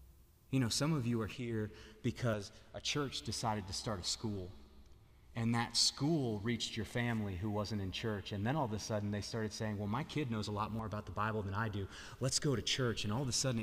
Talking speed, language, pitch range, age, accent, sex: 245 wpm, English, 100-130 Hz, 30-49, American, male